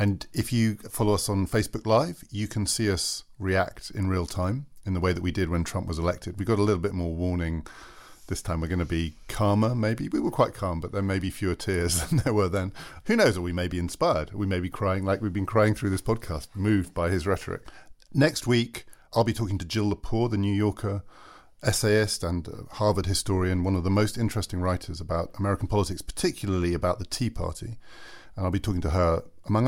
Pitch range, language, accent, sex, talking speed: 90-105 Hz, English, British, male, 230 wpm